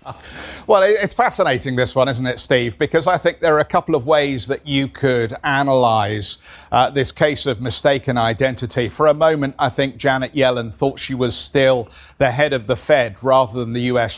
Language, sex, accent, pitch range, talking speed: English, male, British, 130-155 Hz, 195 wpm